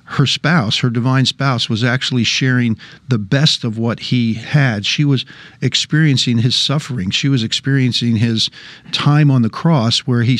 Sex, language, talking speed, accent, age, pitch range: male, English, 165 wpm, American, 50-69, 120-145 Hz